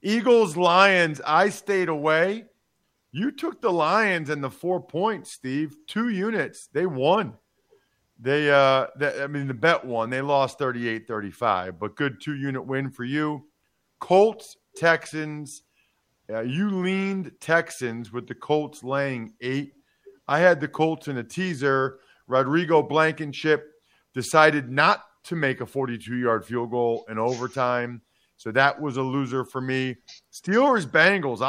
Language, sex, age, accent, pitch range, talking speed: English, male, 40-59, American, 130-175 Hz, 135 wpm